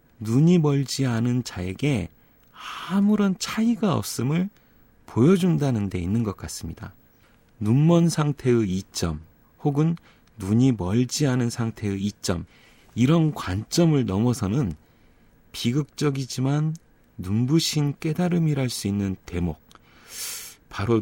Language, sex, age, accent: Korean, male, 30-49, native